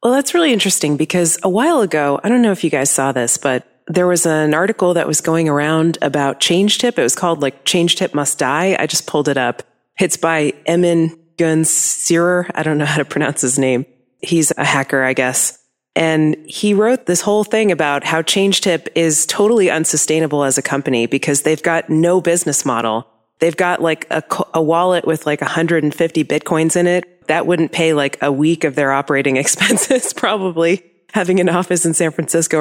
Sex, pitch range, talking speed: female, 140-175 Hz, 200 wpm